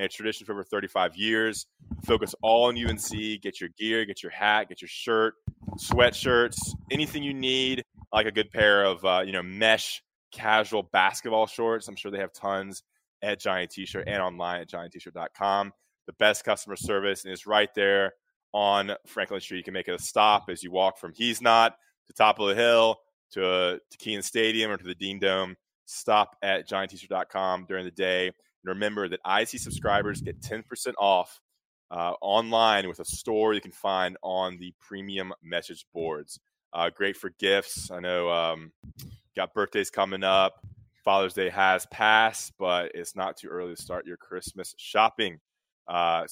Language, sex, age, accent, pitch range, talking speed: English, male, 20-39, American, 95-110 Hz, 180 wpm